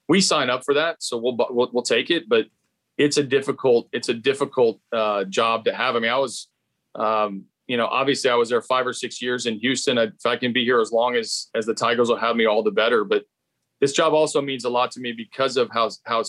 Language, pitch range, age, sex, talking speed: English, 115-145 Hz, 40-59, male, 260 wpm